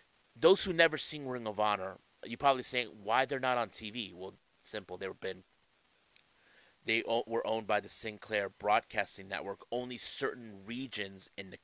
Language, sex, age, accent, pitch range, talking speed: English, male, 30-49, American, 100-125 Hz, 170 wpm